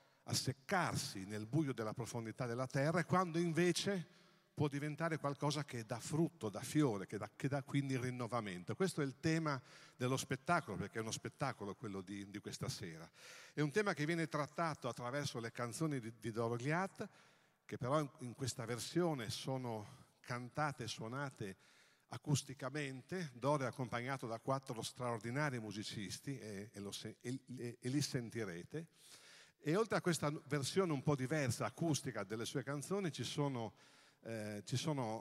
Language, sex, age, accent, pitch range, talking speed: Italian, male, 50-69, native, 115-150 Hz, 160 wpm